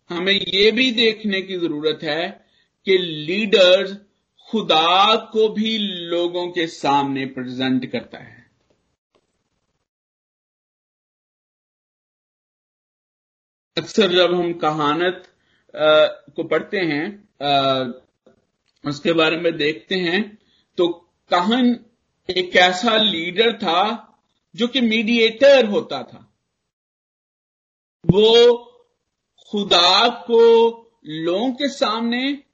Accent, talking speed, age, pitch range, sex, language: native, 85 wpm, 50-69, 170-235 Hz, male, Hindi